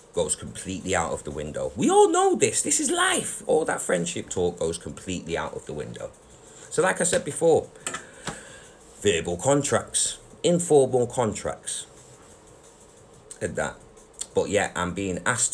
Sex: male